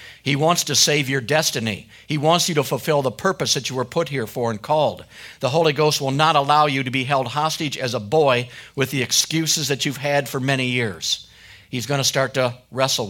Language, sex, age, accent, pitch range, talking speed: English, male, 50-69, American, 120-145 Hz, 230 wpm